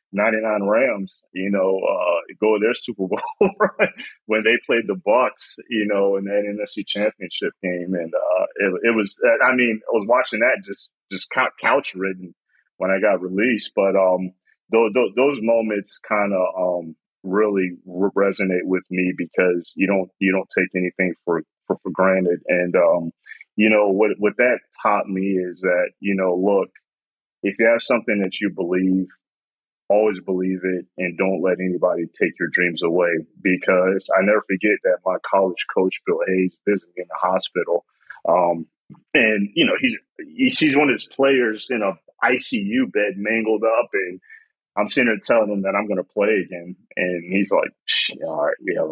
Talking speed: 185 wpm